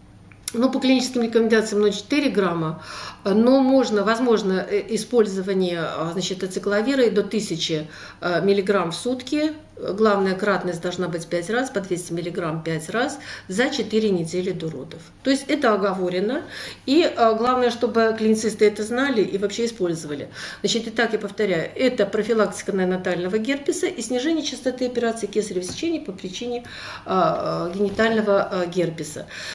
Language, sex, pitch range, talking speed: Russian, female, 190-240 Hz, 130 wpm